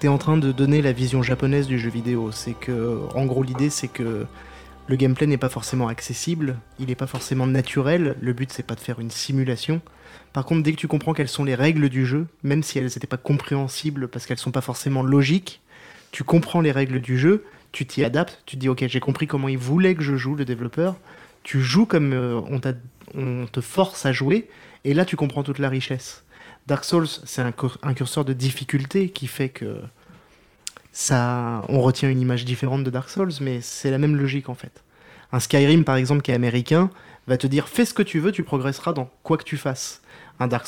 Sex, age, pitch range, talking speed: male, 20-39, 125-150 Hz, 225 wpm